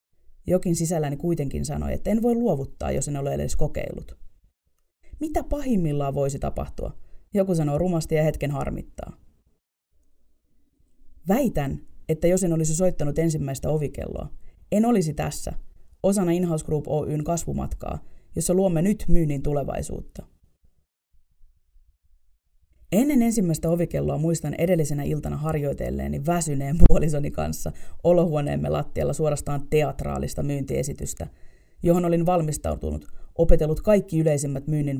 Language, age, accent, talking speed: Finnish, 30-49, native, 115 wpm